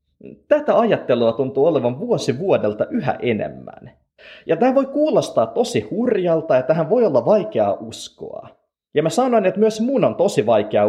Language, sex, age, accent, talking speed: Finnish, male, 30-49, native, 160 wpm